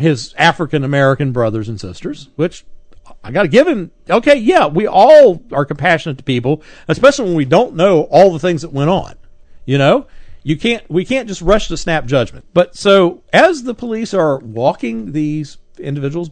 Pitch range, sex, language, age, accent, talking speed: 130-215 Hz, male, English, 50-69, American, 180 wpm